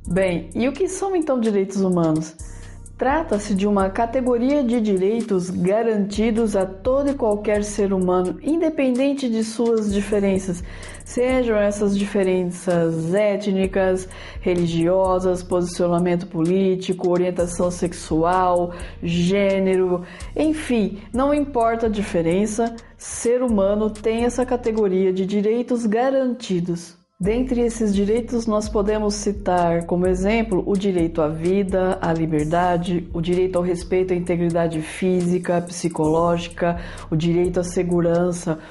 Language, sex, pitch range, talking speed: Portuguese, female, 180-220 Hz, 115 wpm